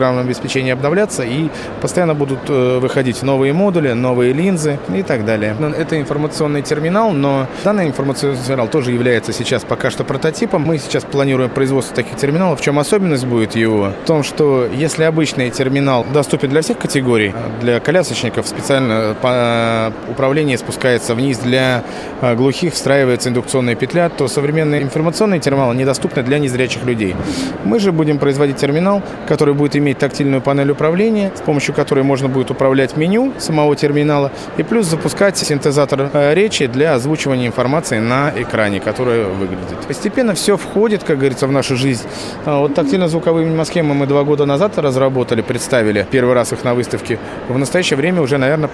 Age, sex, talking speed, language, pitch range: 20-39, male, 155 wpm, Russian, 125-155 Hz